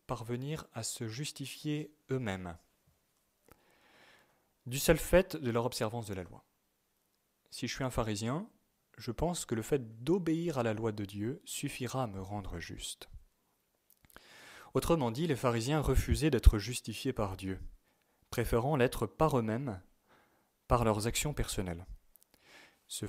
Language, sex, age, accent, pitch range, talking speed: French, male, 30-49, French, 105-135 Hz, 140 wpm